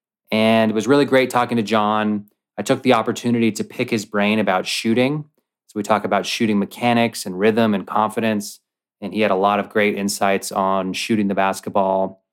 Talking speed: 195 wpm